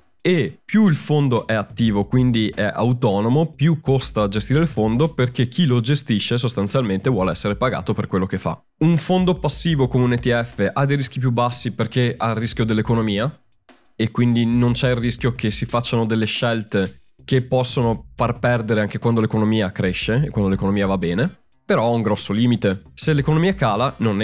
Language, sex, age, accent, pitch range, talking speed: Italian, male, 20-39, native, 105-135 Hz, 185 wpm